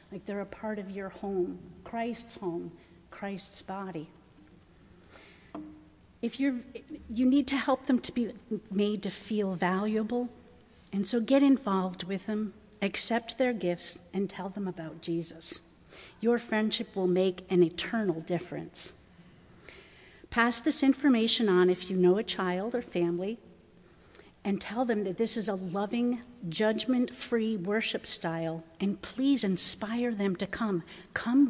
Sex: female